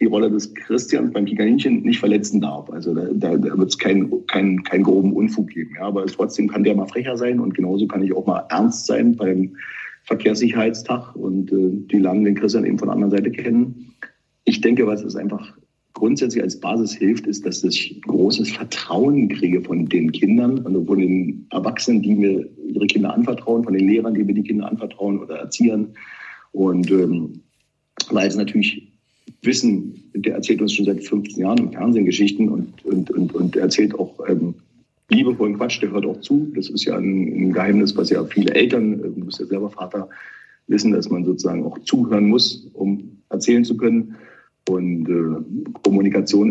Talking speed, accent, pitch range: 190 wpm, German, 95-115 Hz